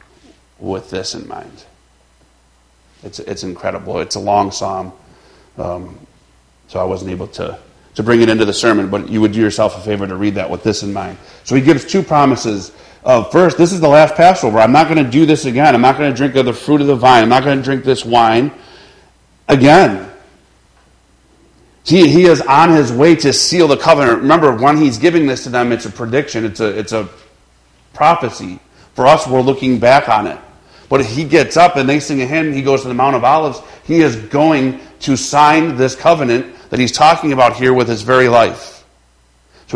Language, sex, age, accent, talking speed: English, male, 40-59, American, 210 wpm